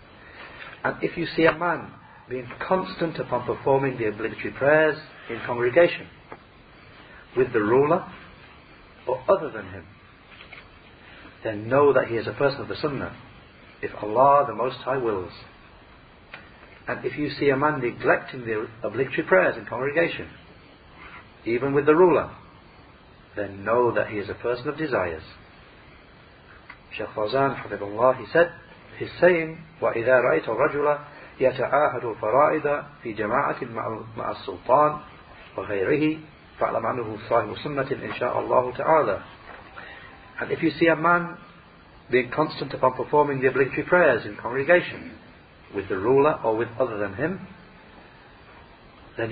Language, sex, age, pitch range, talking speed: English, male, 50-69, 115-155 Hz, 135 wpm